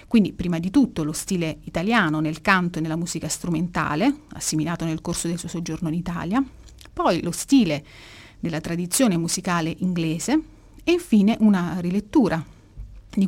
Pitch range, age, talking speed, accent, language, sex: 165-200 Hz, 30-49, 150 wpm, native, Italian, female